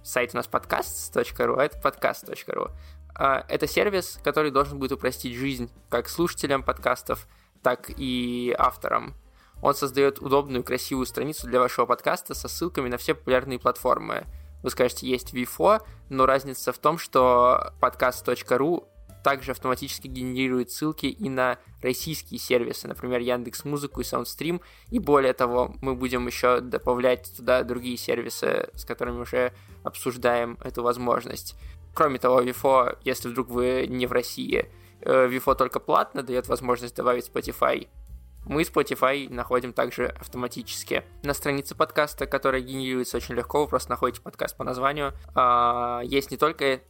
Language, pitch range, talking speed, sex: Russian, 120-135 Hz, 140 wpm, male